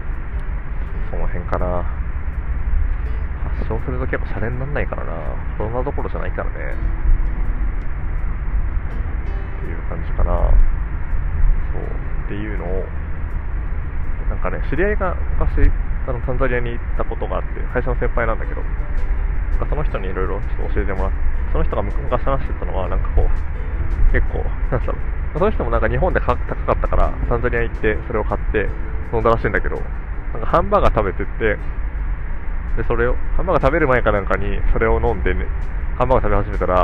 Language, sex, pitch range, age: Japanese, male, 75-90 Hz, 20-39